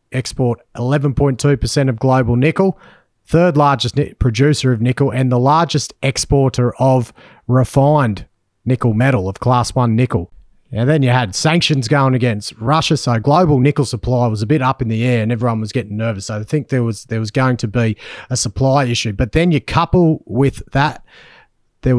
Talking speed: 185 wpm